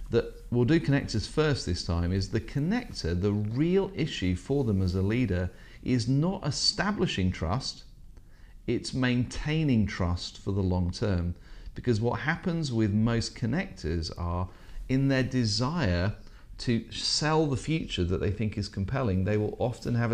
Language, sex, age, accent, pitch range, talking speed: English, male, 40-59, British, 95-130 Hz, 155 wpm